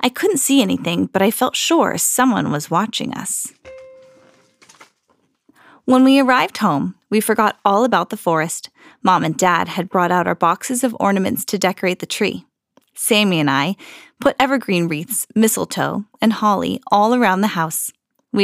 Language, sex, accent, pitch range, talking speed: English, female, American, 195-275 Hz, 165 wpm